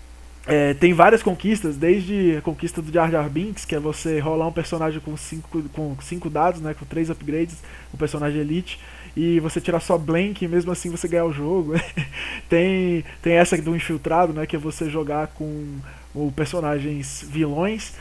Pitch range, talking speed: 155-175 Hz, 190 wpm